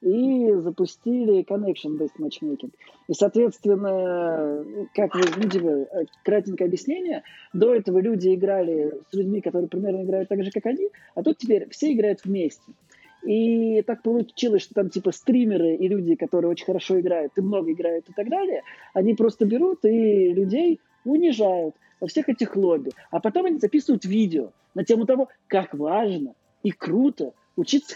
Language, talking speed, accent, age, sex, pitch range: Russian, 155 wpm, native, 20-39, male, 185-250 Hz